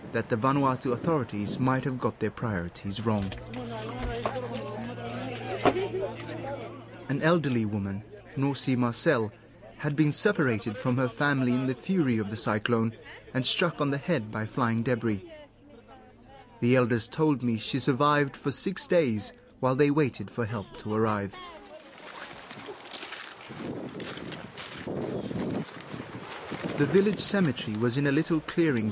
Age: 30-49